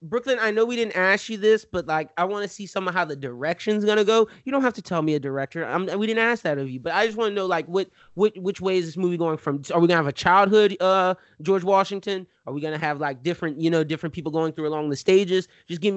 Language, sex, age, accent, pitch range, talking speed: English, male, 20-39, American, 155-195 Hz, 305 wpm